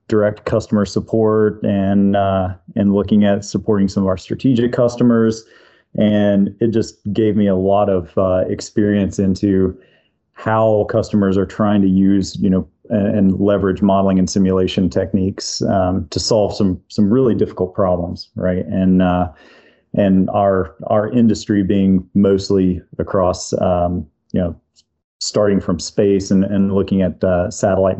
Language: English